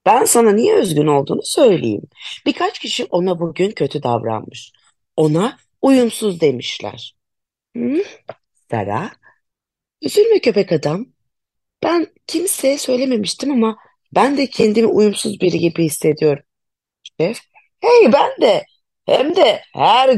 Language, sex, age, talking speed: Turkish, female, 40-59, 110 wpm